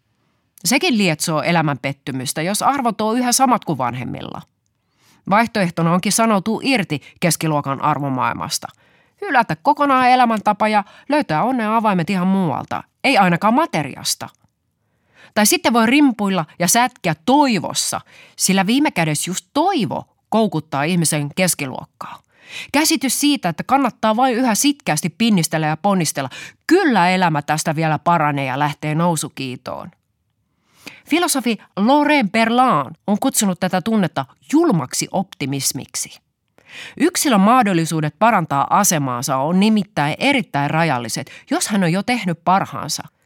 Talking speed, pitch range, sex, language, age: 120 wpm, 155-235 Hz, female, Finnish, 30-49